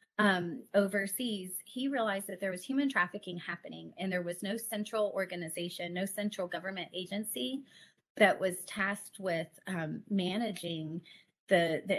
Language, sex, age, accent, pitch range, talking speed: English, female, 30-49, American, 175-210 Hz, 140 wpm